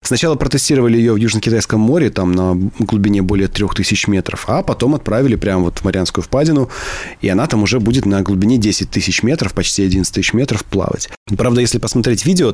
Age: 20-39